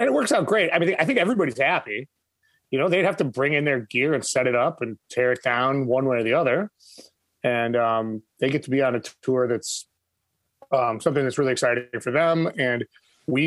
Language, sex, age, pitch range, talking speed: English, male, 30-49, 120-150 Hz, 230 wpm